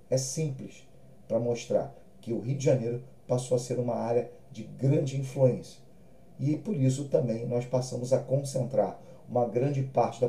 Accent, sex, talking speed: Brazilian, male, 170 wpm